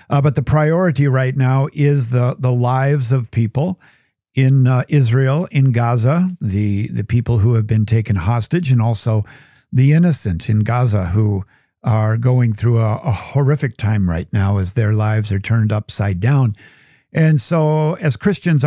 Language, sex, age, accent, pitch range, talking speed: English, male, 50-69, American, 110-140 Hz, 165 wpm